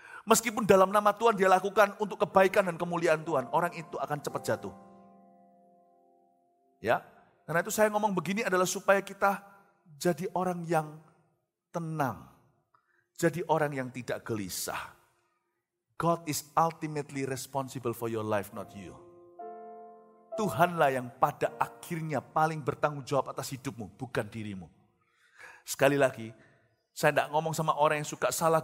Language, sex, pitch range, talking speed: Indonesian, male, 135-210 Hz, 135 wpm